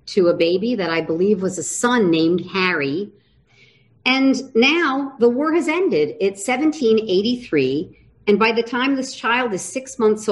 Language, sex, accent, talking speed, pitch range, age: English, female, American, 165 wpm, 180-265 Hz, 50-69